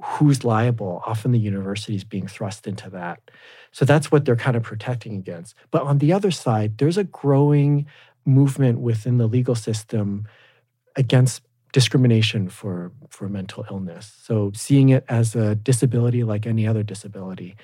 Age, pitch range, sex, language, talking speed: 40-59, 105-130 Hz, male, English, 160 wpm